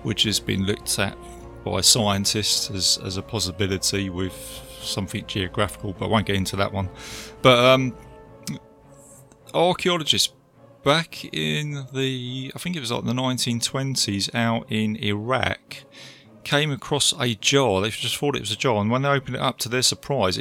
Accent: British